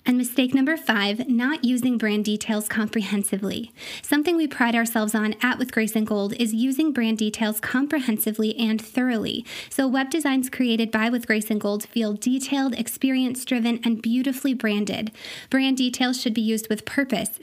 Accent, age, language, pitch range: American, 20-39, English, 220-255 Hz